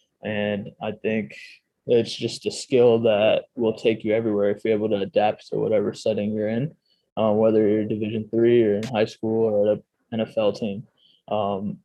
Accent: American